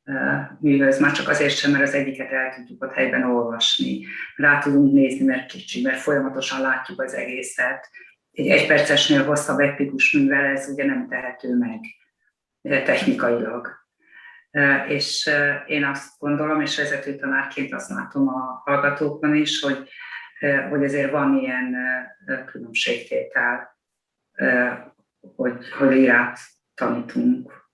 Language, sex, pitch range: Hungarian, female, 135-195 Hz